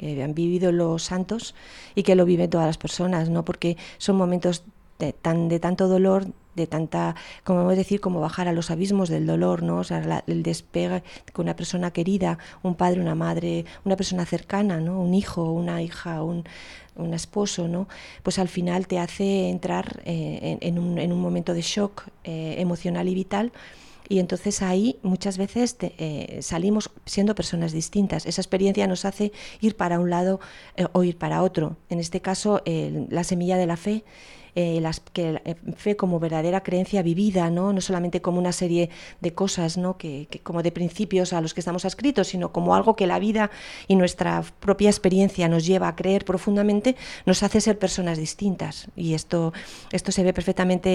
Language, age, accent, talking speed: Spanish, 30-49, Spanish, 195 wpm